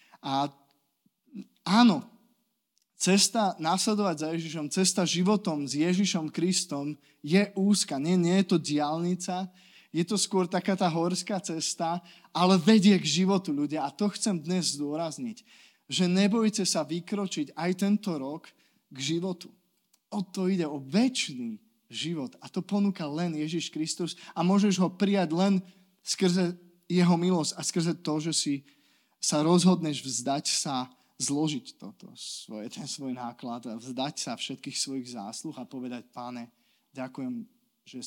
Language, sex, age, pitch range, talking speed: Slovak, male, 20-39, 140-195 Hz, 140 wpm